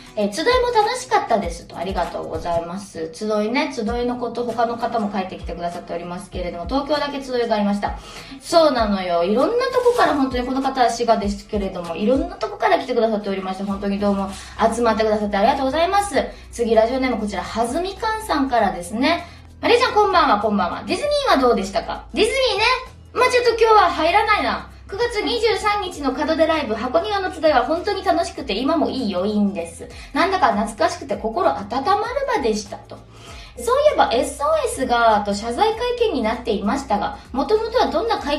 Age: 20-39